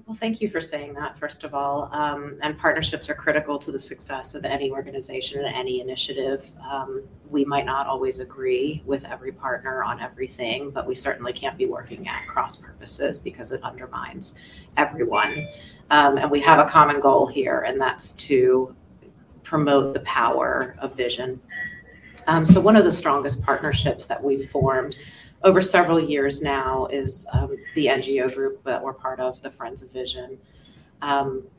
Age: 30-49